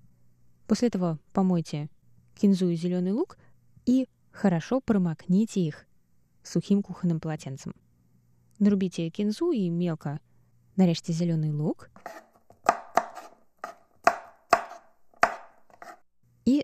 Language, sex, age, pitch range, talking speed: Russian, female, 20-39, 155-200 Hz, 80 wpm